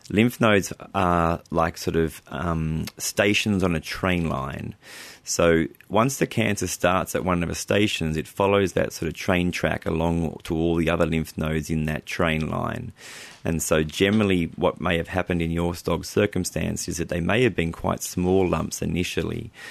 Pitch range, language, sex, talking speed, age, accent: 80-90 Hz, English, male, 185 wpm, 30-49, Australian